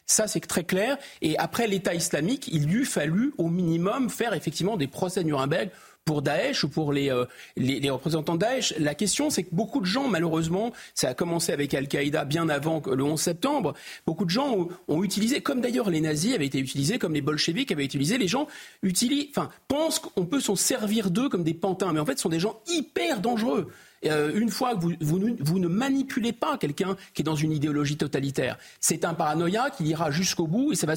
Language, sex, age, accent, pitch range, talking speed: French, male, 40-59, French, 145-205 Hz, 220 wpm